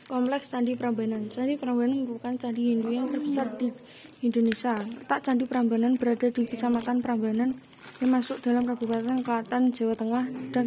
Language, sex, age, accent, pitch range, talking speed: Indonesian, female, 20-39, native, 230-250 Hz, 150 wpm